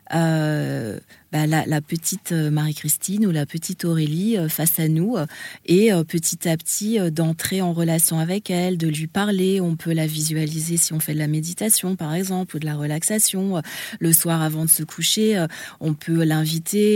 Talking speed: 190 wpm